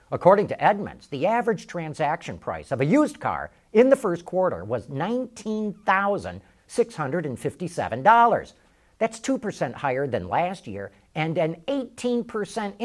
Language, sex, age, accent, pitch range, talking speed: English, male, 50-69, American, 130-210 Hz, 120 wpm